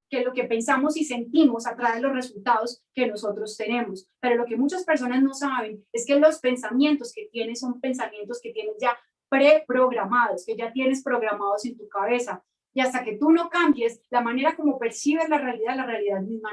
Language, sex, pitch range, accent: Spanish, female, 240-310 Hz, Colombian